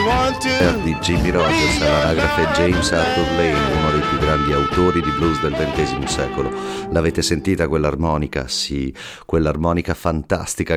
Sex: male